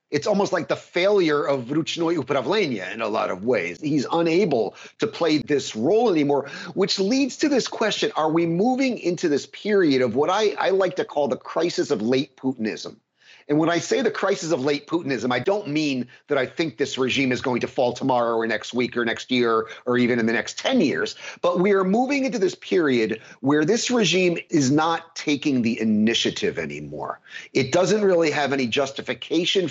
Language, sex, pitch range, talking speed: English, male, 125-175 Hz, 200 wpm